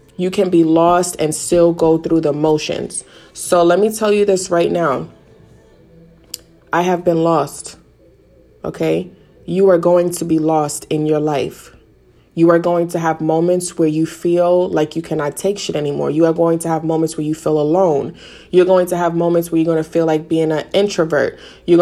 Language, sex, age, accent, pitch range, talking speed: English, female, 20-39, American, 155-185 Hz, 200 wpm